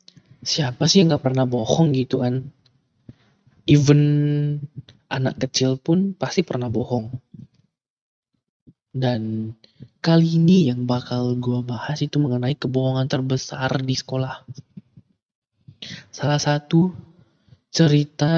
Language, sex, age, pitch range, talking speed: Indonesian, male, 20-39, 125-145 Hz, 100 wpm